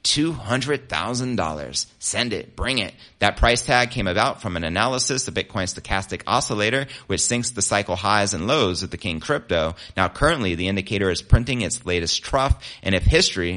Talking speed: 175 wpm